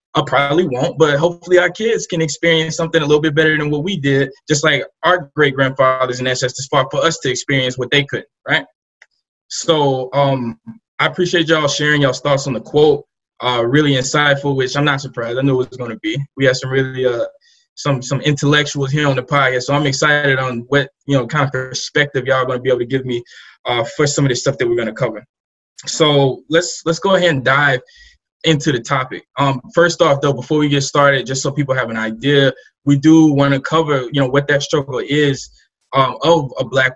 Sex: male